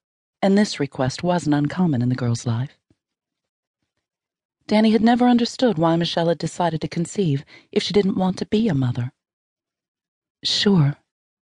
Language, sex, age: English, female, 40-59